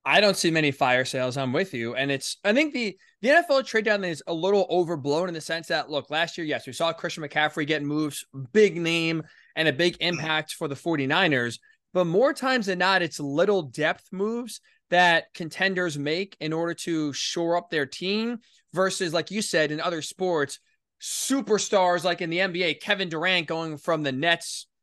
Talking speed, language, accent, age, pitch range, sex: 200 wpm, English, American, 20-39, 160-220 Hz, male